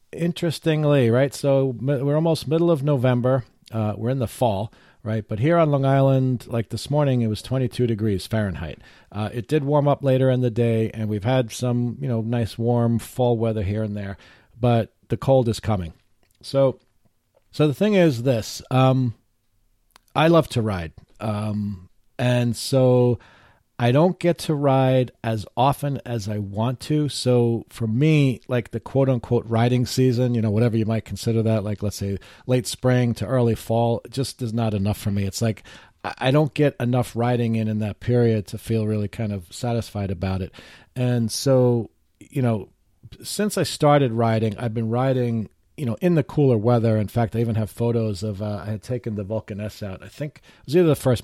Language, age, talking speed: English, 40-59, 195 wpm